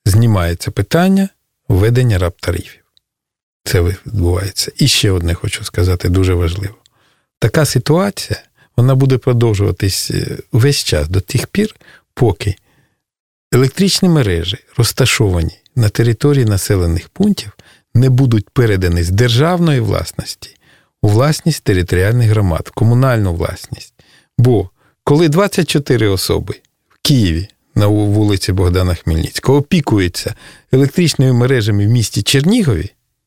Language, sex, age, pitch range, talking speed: Russian, male, 50-69, 100-140 Hz, 105 wpm